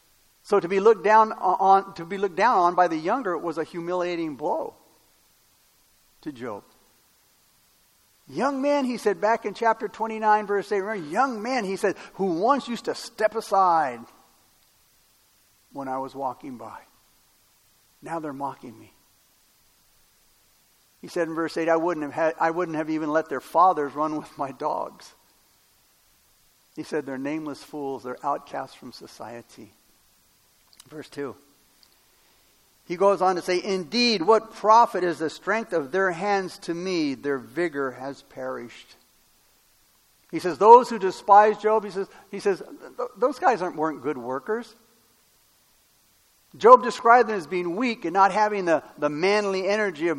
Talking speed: 160 wpm